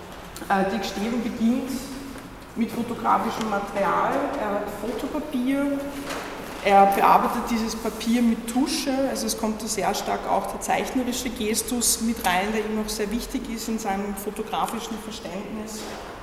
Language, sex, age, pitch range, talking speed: German, female, 20-39, 195-230 Hz, 135 wpm